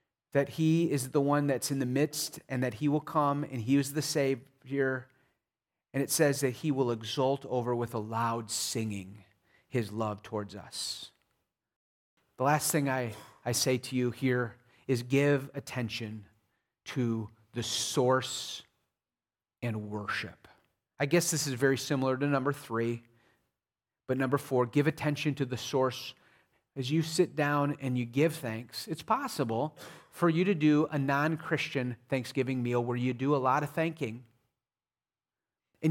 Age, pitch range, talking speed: 30-49, 125-150 Hz, 160 wpm